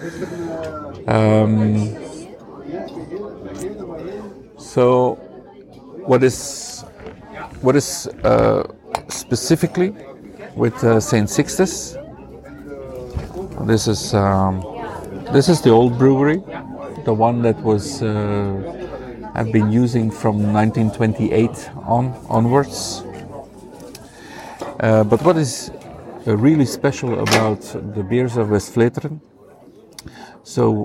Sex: male